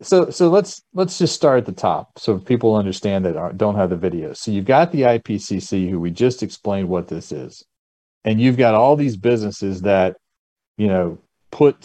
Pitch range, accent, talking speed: 95-115 Hz, American, 205 wpm